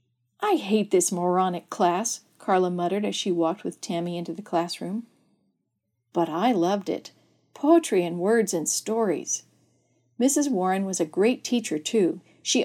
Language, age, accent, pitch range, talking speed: English, 50-69, American, 190-250 Hz, 150 wpm